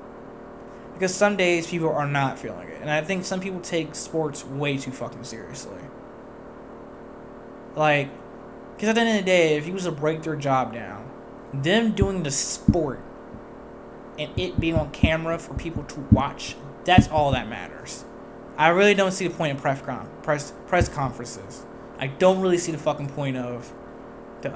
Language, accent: English, American